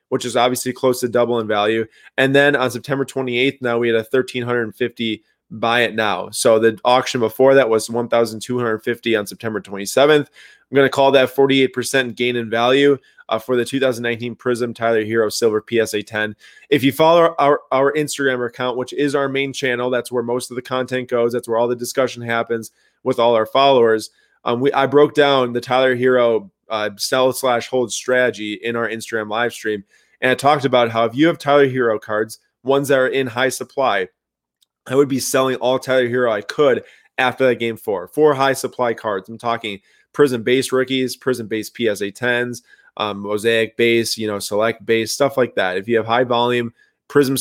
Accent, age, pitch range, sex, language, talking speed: American, 20-39, 115-130 Hz, male, English, 195 wpm